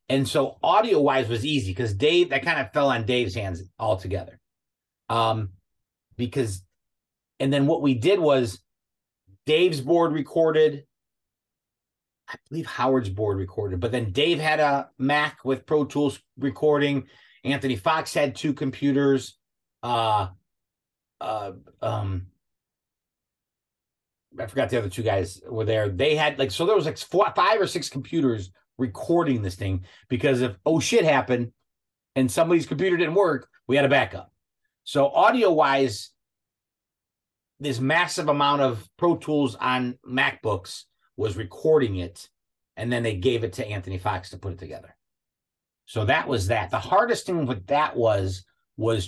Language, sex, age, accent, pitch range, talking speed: English, male, 30-49, American, 95-140 Hz, 150 wpm